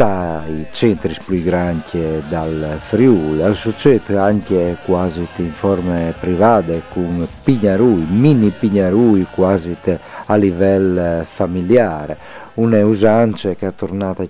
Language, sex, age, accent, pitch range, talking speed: Italian, male, 50-69, native, 85-100 Hz, 100 wpm